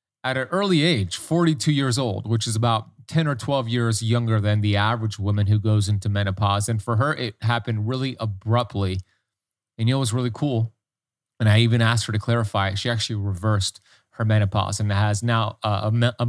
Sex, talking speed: male, 205 wpm